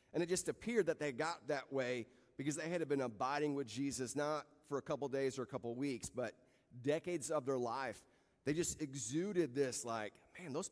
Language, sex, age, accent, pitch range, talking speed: English, male, 30-49, American, 130-160 Hz, 205 wpm